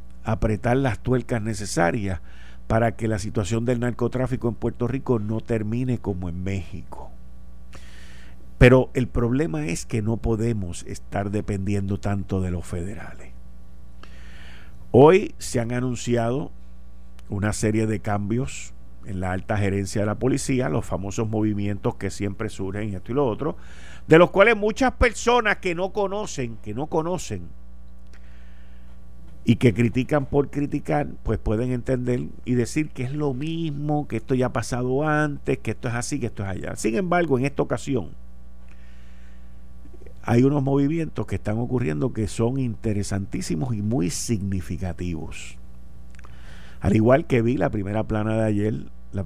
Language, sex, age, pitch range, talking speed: Spanish, male, 50-69, 80-125 Hz, 150 wpm